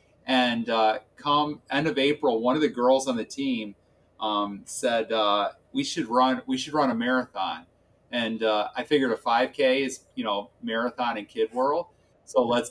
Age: 30-49